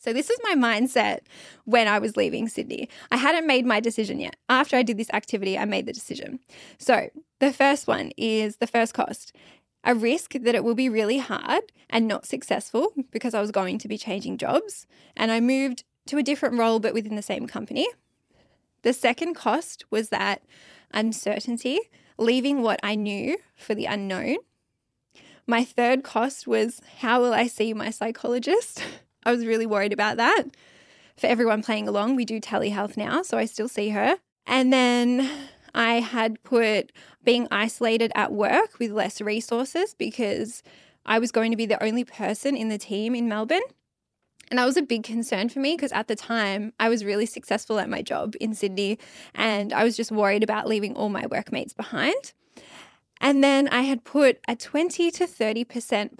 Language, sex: English, female